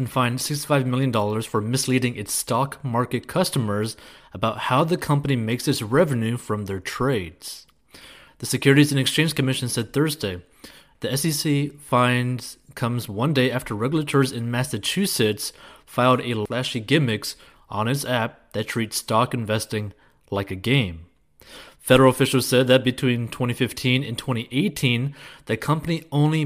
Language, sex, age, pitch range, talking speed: English, male, 30-49, 115-145 Hz, 140 wpm